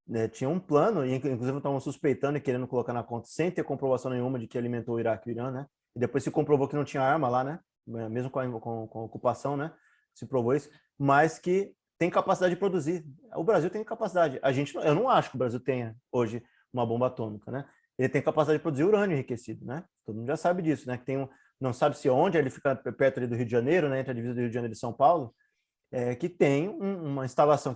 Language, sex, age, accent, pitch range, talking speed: Portuguese, male, 20-39, Brazilian, 130-165 Hz, 250 wpm